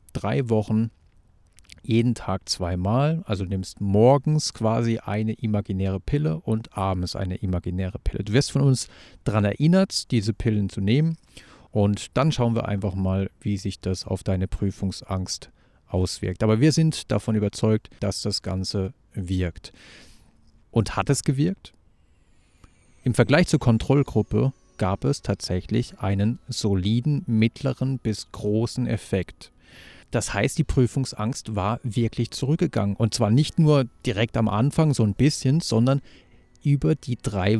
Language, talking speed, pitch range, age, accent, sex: German, 140 wpm, 100-130 Hz, 40-59, German, male